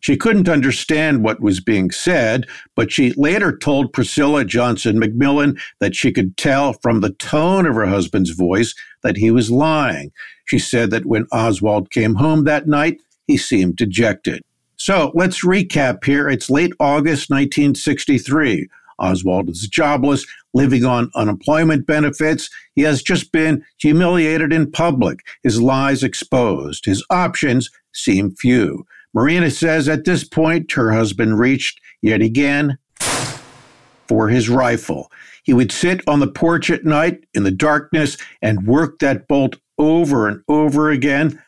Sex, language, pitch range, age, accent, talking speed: male, English, 115-155 Hz, 50-69, American, 150 wpm